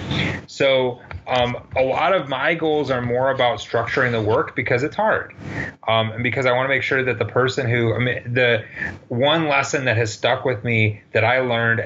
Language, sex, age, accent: English, male, 30-49, American